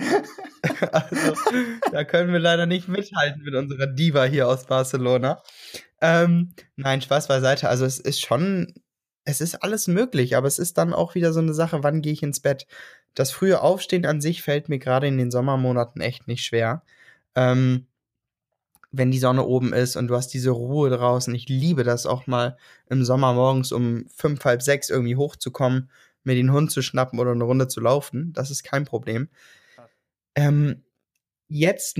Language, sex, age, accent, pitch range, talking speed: German, male, 20-39, German, 125-150 Hz, 180 wpm